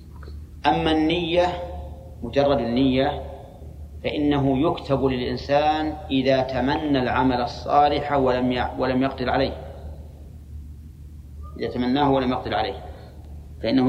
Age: 40-59